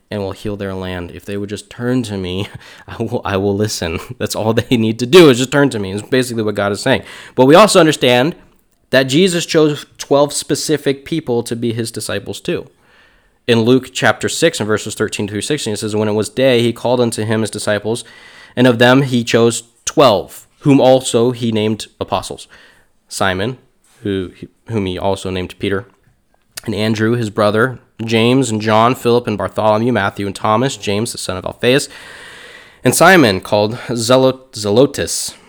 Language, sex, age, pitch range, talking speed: English, male, 20-39, 100-125 Hz, 185 wpm